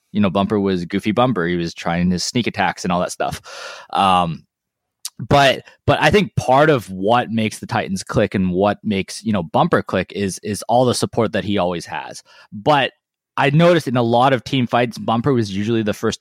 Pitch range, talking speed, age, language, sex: 95-120 Hz, 215 wpm, 20-39, English, male